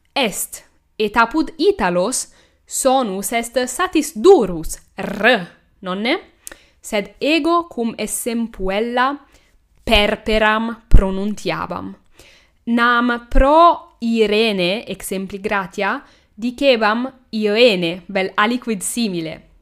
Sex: female